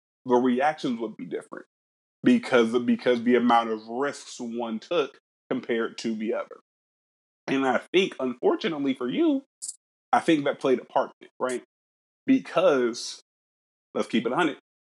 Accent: American